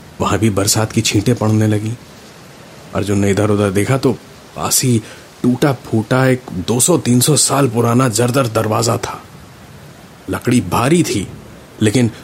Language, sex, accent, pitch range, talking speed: Hindi, male, native, 95-130 Hz, 125 wpm